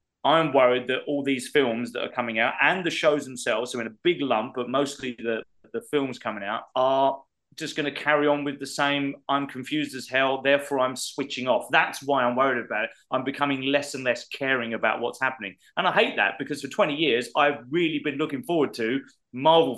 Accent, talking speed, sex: British, 225 wpm, male